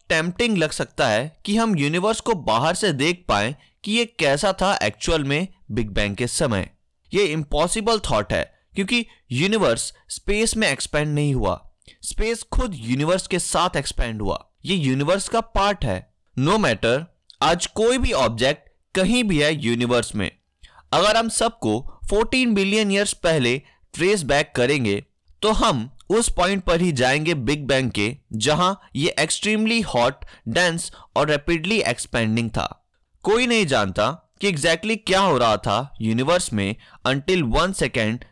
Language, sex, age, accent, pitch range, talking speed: Hindi, male, 20-39, native, 120-200 Hz, 150 wpm